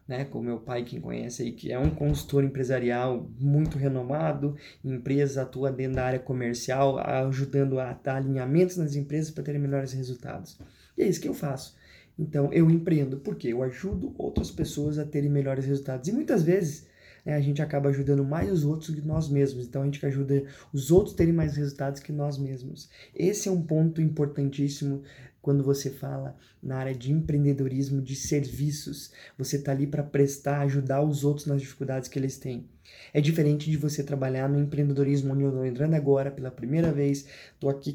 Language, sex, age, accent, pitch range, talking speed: Portuguese, male, 20-39, Brazilian, 135-145 Hz, 190 wpm